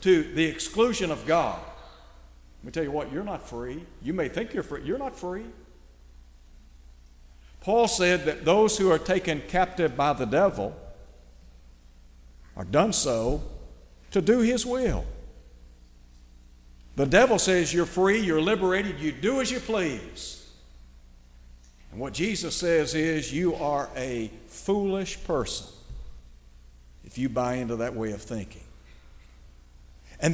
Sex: male